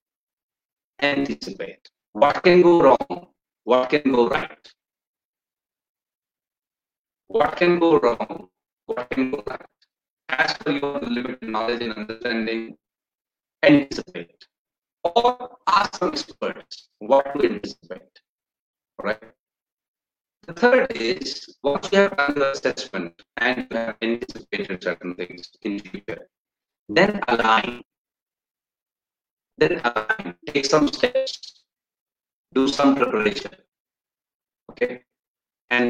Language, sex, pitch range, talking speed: Hindi, male, 115-175 Hz, 100 wpm